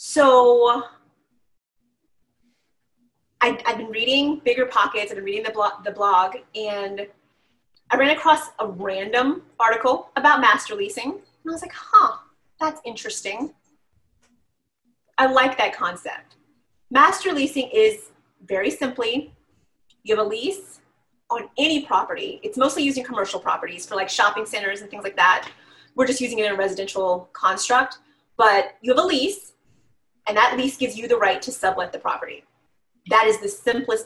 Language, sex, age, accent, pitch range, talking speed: English, female, 30-49, American, 215-310 Hz, 155 wpm